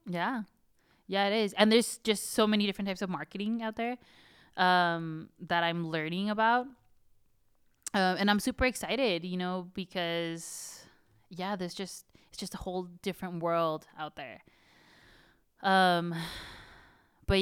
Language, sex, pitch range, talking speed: English, female, 155-190 Hz, 140 wpm